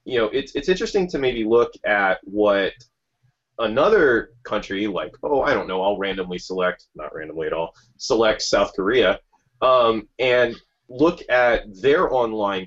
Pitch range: 100-130 Hz